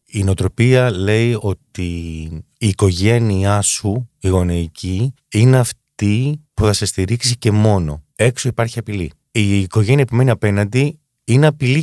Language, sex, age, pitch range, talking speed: Greek, male, 30-49, 90-125 Hz, 135 wpm